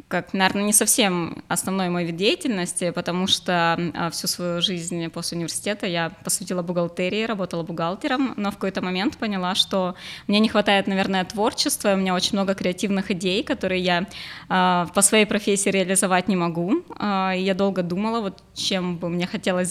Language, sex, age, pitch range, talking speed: Russian, female, 20-39, 180-210 Hz, 165 wpm